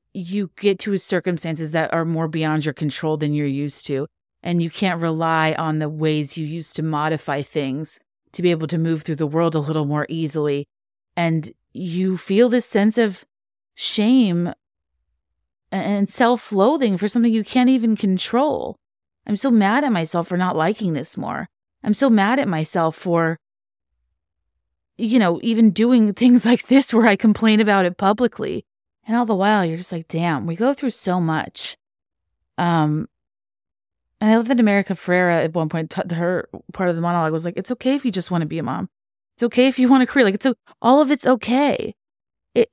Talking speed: 195 wpm